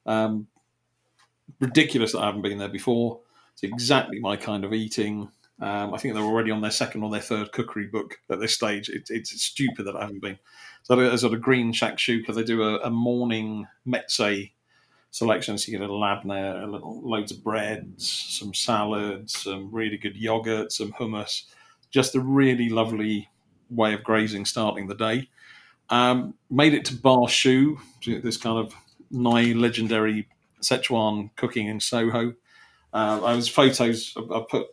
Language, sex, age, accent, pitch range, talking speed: English, male, 40-59, British, 110-120 Hz, 170 wpm